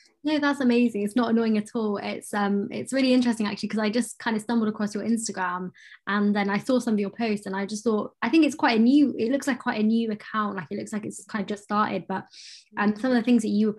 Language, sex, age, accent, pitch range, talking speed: English, female, 20-39, British, 195-230 Hz, 290 wpm